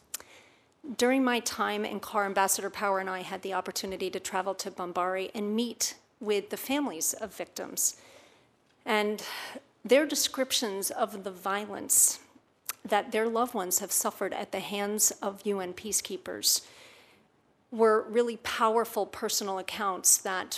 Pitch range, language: 190-225 Hz, English